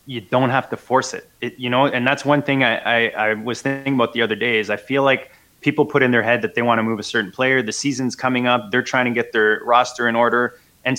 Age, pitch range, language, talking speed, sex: 20-39, 115-135 Hz, English, 280 wpm, male